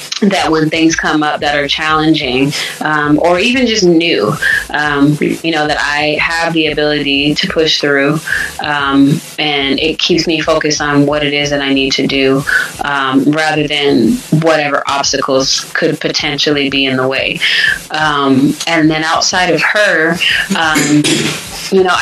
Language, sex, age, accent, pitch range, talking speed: English, female, 20-39, American, 150-175 Hz, 160 wpm